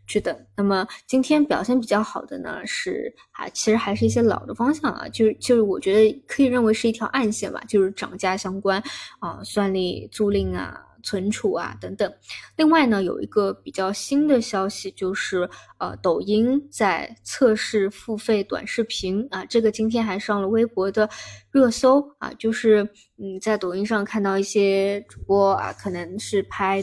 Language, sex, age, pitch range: Chinese, female, 20-39, 195-235 Hz